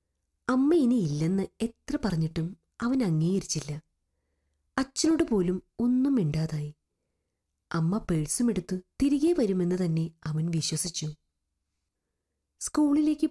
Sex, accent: female, native